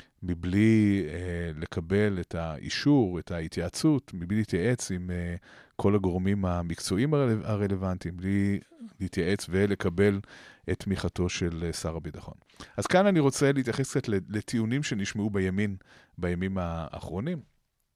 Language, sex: Hebrew, male